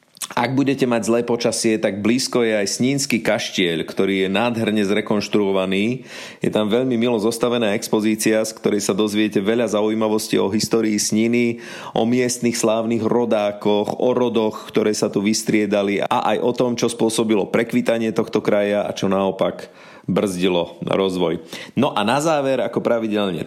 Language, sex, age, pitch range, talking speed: Slovak, male, 30-49, 105-130 Hz, 155 wpm